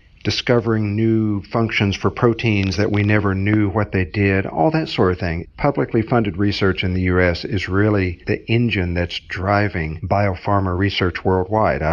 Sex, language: male, English